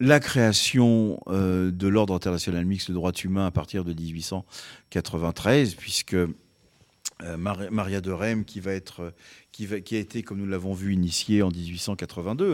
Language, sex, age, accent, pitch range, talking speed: French, male, 40-59, French, 90-115 Hz, 135 wpm